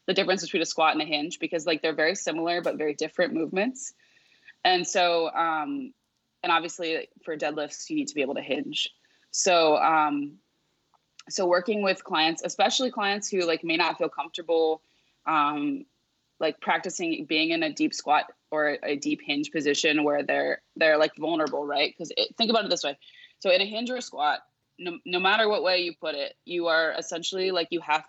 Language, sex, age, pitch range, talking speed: English, female, 20-39, 150-180 Hz, 195 wpm